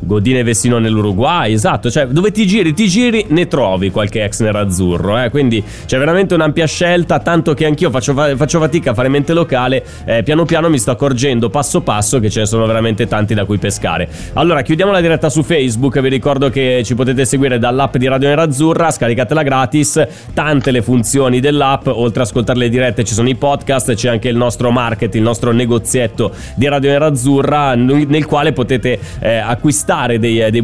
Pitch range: 115-145 Hz